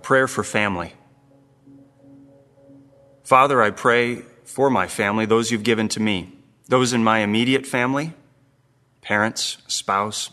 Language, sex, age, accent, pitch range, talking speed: English, male, 30-49, American, 100-125 Hz, 120 wpm